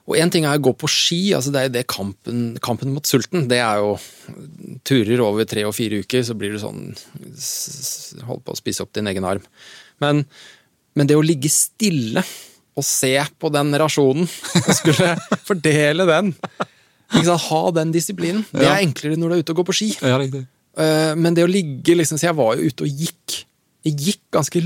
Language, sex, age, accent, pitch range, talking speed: English, male, 20-39, Norwegian, 120-175 Hz, 200 wpm